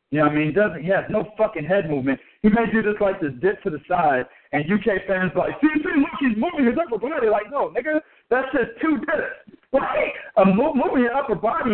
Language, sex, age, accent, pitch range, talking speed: English, male, 60-79, American, 175-240 Hz, 255 wpm